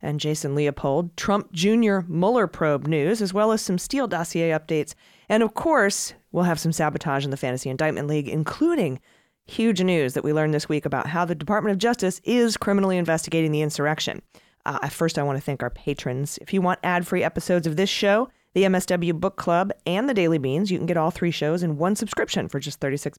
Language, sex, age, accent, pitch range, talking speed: English, female, 30-49, American, 150-190 Hz, 215 wpm